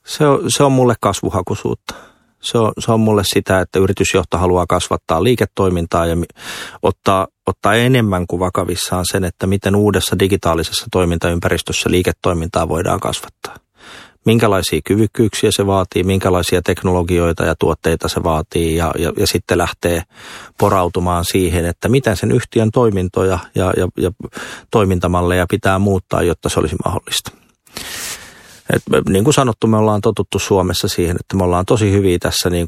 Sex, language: male, Finnish